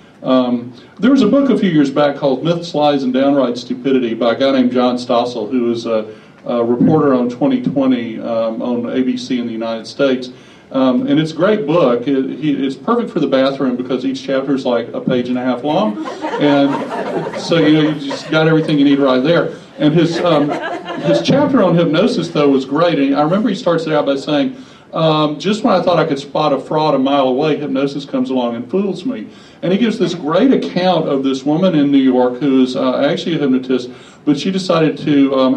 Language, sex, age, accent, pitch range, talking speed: English, male, 40-59, American, 130-160 Hz, 220 wpm